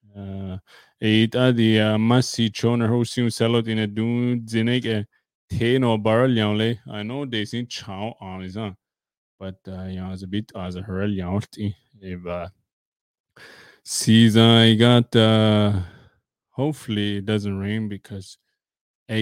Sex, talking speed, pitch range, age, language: male, 145 wpm, 95-115 Hz, 20-39, English